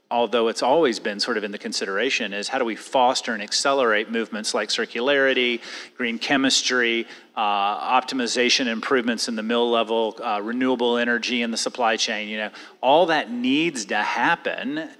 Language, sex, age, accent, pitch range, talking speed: English, male, 30-49, American, 110-125 Hz, 170 wpm